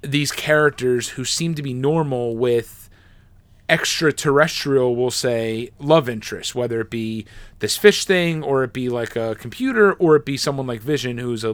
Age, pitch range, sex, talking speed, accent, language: 30-49, 110-140 Hz, male, 170 wpm, American, English